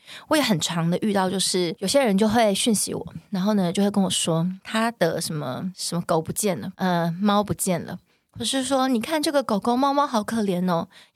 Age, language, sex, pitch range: 20-39, Chinese, female, 180-240 Hz